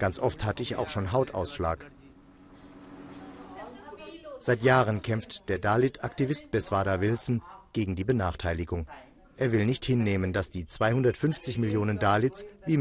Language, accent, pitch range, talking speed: German, German, 95-145 Hz, 125 wpm